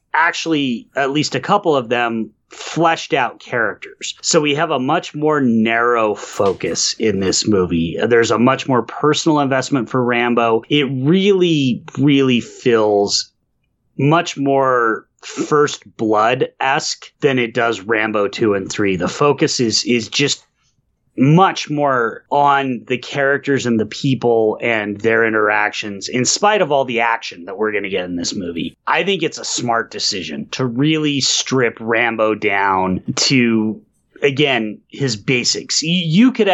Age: 30-49